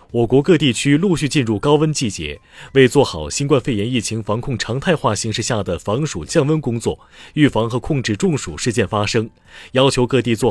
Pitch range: 105-145 Hz